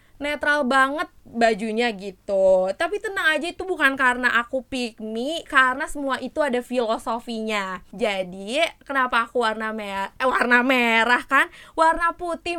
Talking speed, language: 135 wpm, Indonesian